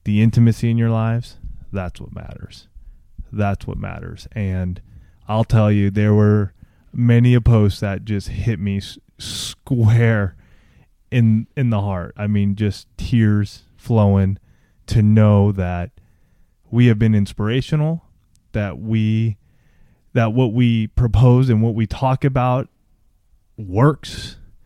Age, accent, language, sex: 20-39, American, English, male